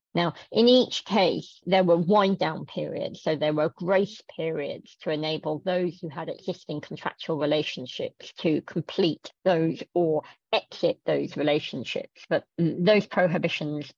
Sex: female